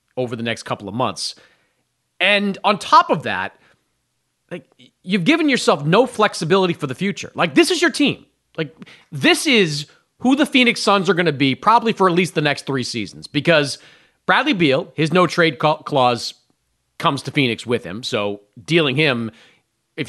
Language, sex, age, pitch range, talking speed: English, male, 30-49, 125-190 Hz, 180 wpm